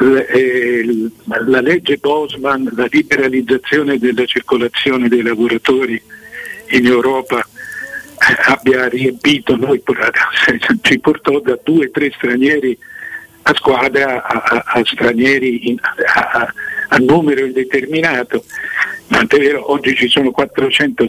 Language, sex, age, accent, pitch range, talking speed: Italian, male, 50-69, native, 125-175 Hz, 110 wpm